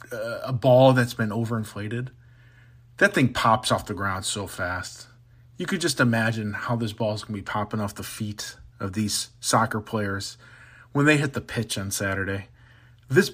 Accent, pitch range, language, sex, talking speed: American, 105-125 Hz, English, male, 180 wpm